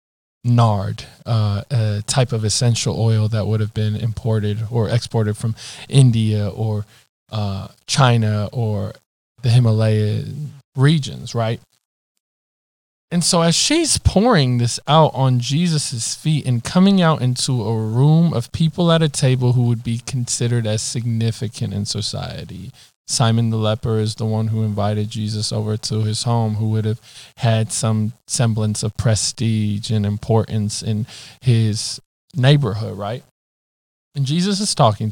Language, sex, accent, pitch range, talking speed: English, male, American, 110-140 Hz, 145 wpm